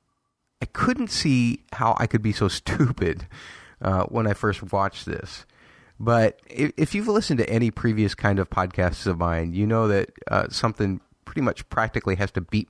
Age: 30-49